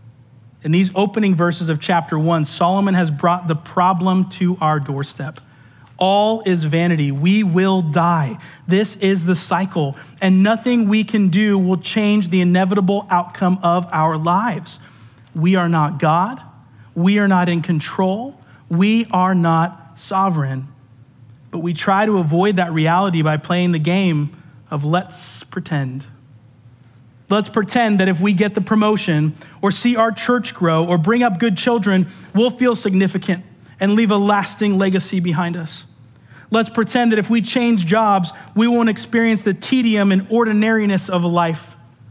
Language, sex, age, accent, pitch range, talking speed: English, male, 30-49, American, 155-210 Hz, 155 wpm